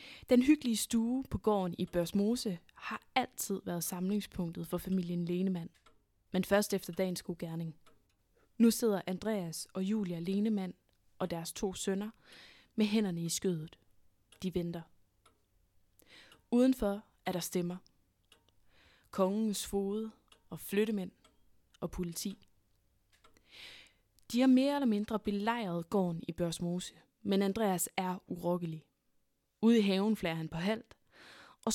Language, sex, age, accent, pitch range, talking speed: Danish, female, 20-39, native, 170-215 Hz, 125 wpm